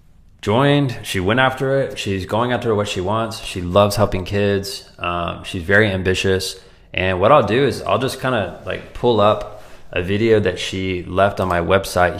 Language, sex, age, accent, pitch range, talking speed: English, male, 20-39, American, 90-110 Hz, 190 wpm